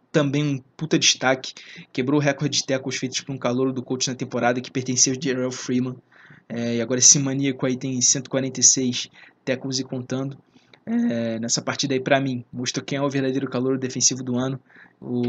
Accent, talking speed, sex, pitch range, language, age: Brazilian, 190 wpm, male, 125-135 Hz, Portuguese, 20-39